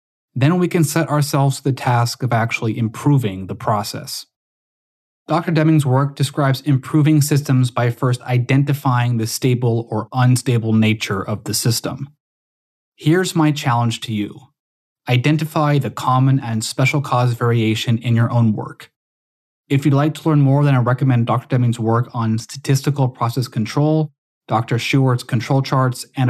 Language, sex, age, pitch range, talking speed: English, male, 20-39, 110-135 Hz, 155 wpm